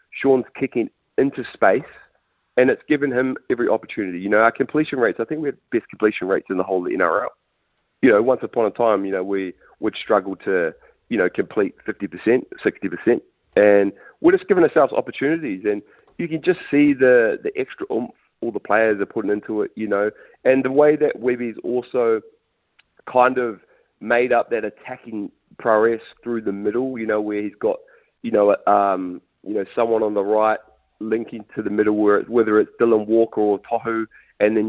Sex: male